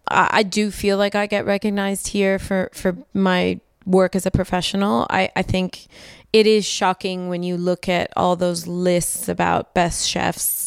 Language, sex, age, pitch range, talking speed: English, female, 20-39, 175-195 Hz, 175 wpm